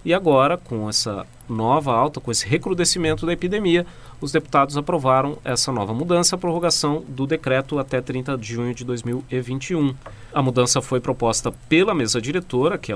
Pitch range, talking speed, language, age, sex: 125-160 Hz, 165 wpm, Portuguese, 40-59, male